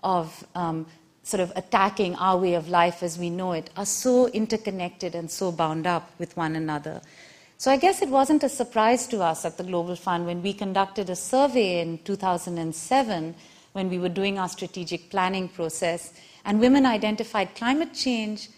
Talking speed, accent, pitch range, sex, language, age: 180 wpm, Indian, 175-215 Hz, female, English, 50-69